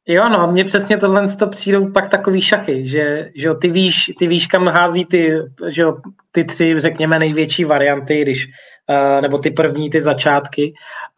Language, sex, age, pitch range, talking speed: Czech, male, 20-39, 150-185 Hz, 165 wpm